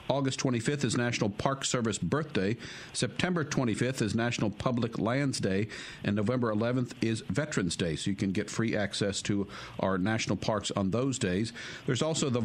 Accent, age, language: American, 50-69, English